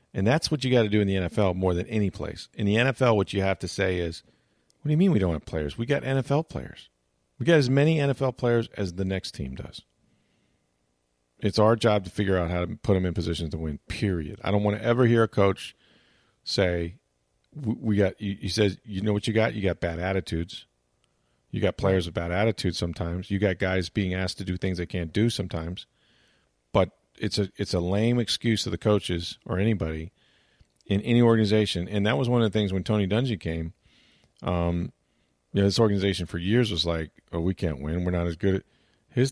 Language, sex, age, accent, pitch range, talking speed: English, male, 40-59, American, 85-115 Hz, 220 wpm